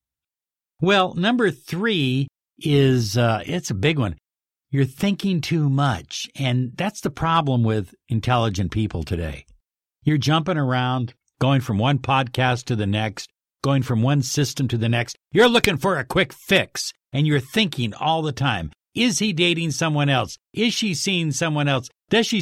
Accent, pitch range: American, 115-170 Hz